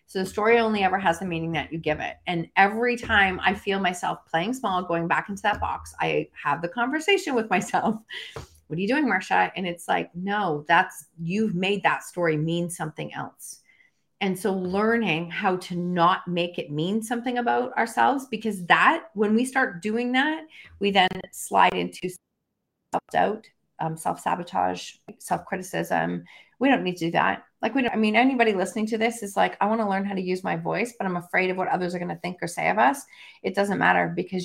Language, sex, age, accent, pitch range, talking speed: English, female, 30-49, American, 170-210 Hz, 205 wpm